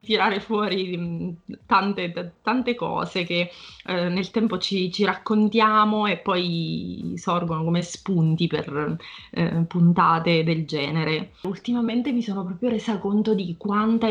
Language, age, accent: Italian, 20-39, native